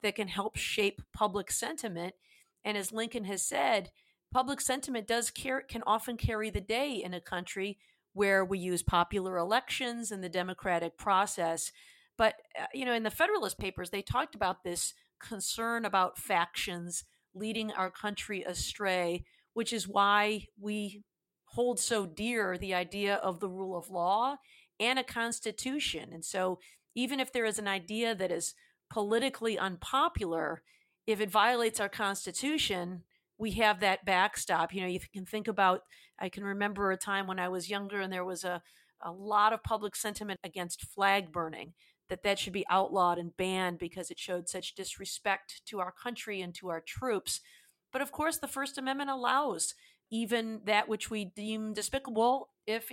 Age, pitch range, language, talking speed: 40-59, 185-225 Hz, English, 170 wpm